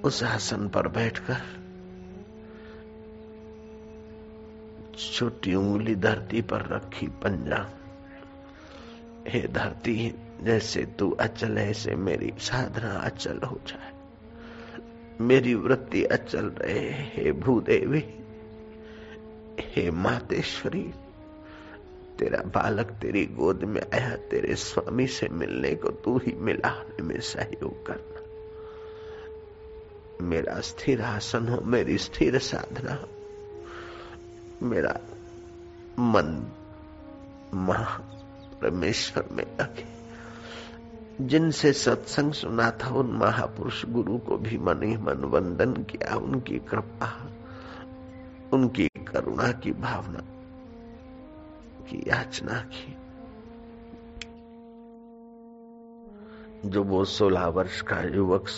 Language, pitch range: Hindi, 100-140 Hz